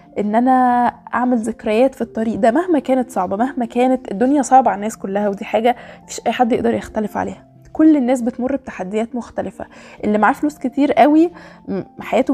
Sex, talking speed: female, 175 wpm